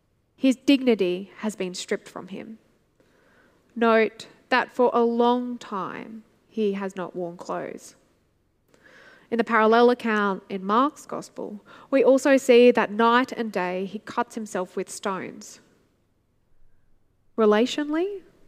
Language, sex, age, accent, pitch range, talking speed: English, female, 10-29, Australian, 205-270 Hz, 125 wpm